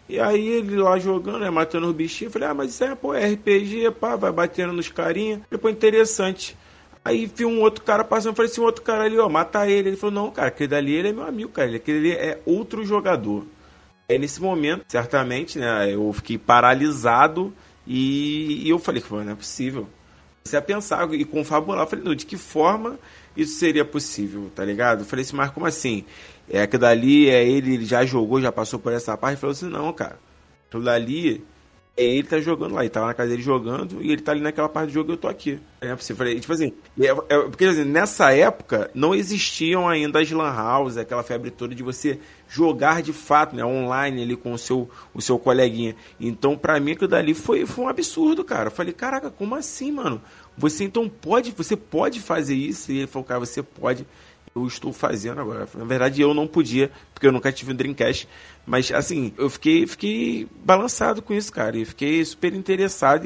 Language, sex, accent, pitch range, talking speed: Portuguese, male, Brazilian, 120-180 Hz, 220 wpm